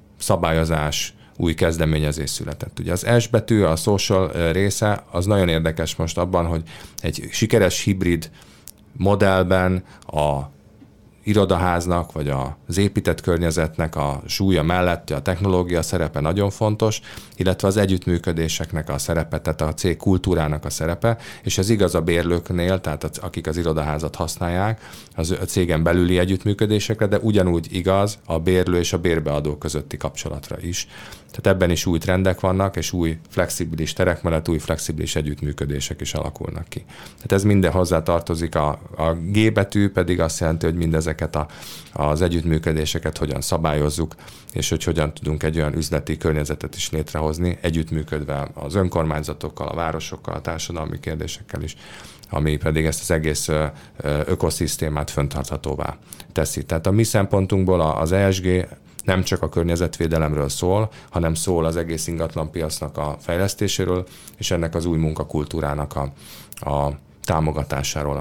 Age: 30-49